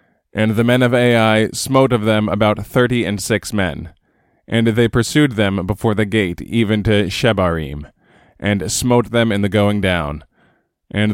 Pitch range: 95-115 Hz